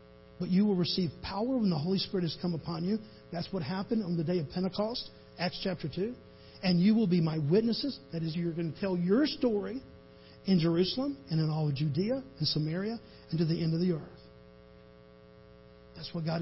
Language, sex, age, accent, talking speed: English, male, 50-69, American, 210 wpm